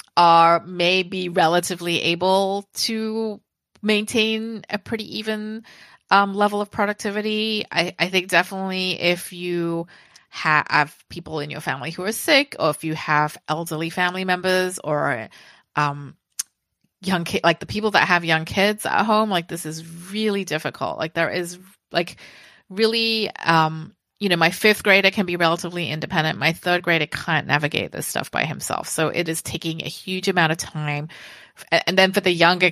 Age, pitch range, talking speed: 30-49, 155-195 Hz, 165 wpm